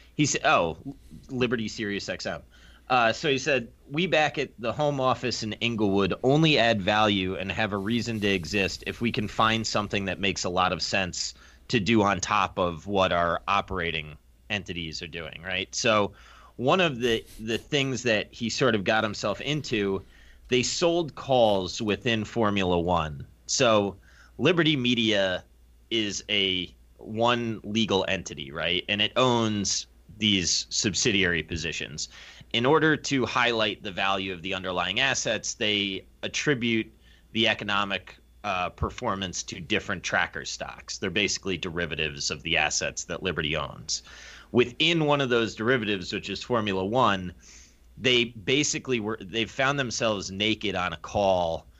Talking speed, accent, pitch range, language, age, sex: 150 wpm, American, 90-115 Hz, English, 30-49, male